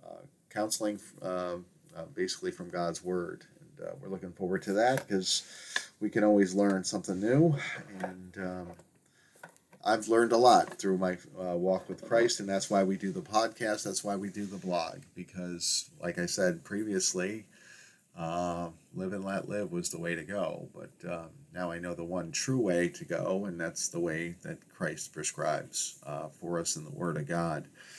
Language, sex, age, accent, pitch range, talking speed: English, male, 40-59, American, 90-125 Hz, 185 wpm